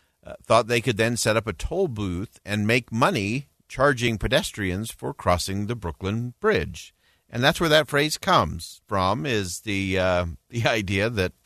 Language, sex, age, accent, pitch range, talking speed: English, male, 50-69, American, 95-125 Hz, 170 wpm